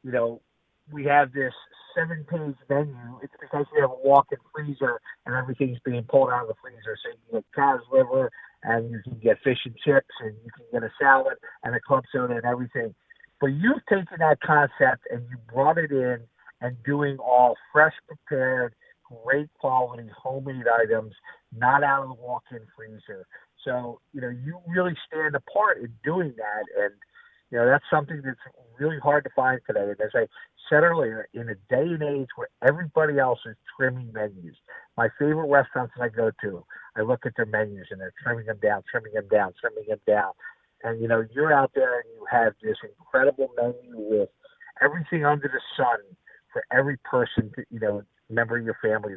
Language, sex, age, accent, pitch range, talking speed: English, male, 50-69, American, 120-155 Hz, 195 wpm